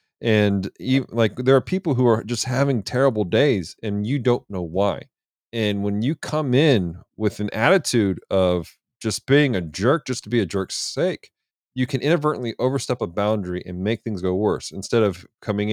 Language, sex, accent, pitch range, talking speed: English, male, American, 100-125 Hz, 185 wpm